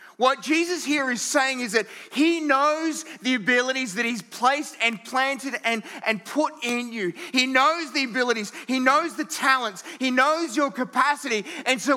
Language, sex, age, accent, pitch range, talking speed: English, male, 30-49, Australian, 220-265 Hz, 175 wpm